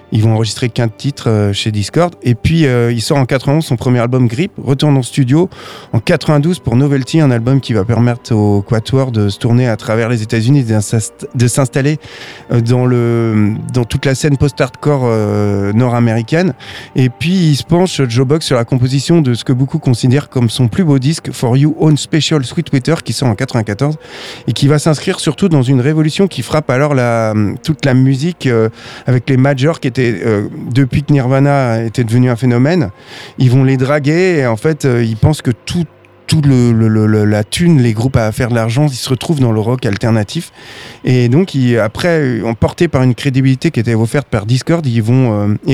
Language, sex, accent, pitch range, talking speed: French, male, French, 115-150 Hz, 205 wpm